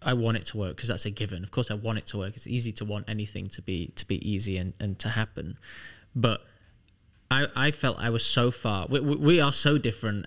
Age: 20-39